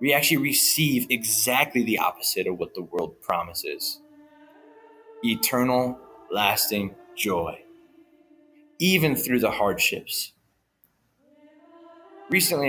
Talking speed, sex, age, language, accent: 90 wpm, male, 20-39, English, American